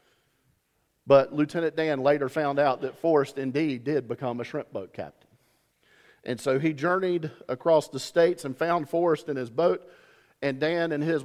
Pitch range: 140-175 Hz